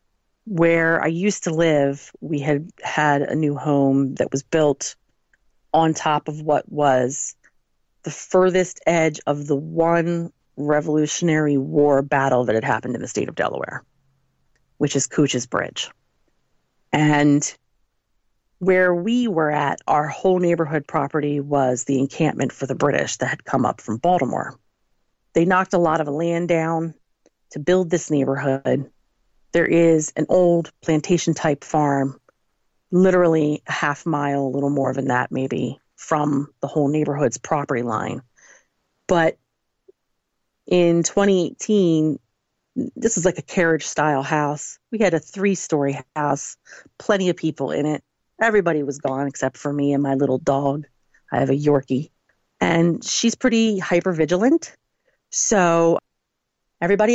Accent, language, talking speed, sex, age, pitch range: American, English, 140 wpm, female, 40-59, 140-170 Hz